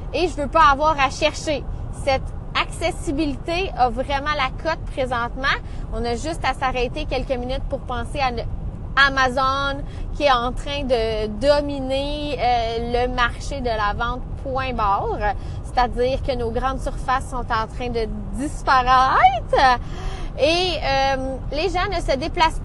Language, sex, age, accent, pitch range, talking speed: French, female, 20-39, Canadian, 250-315 Hz, 150 wpm